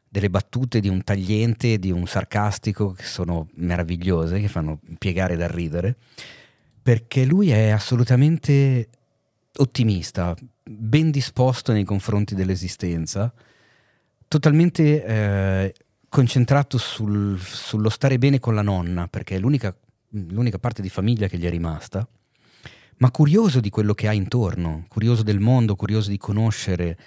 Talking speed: 135 wpm